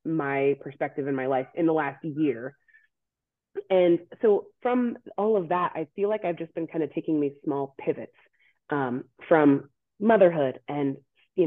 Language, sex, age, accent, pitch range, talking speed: English, female, 30-49, American, 145-185 Hz, 165 wpm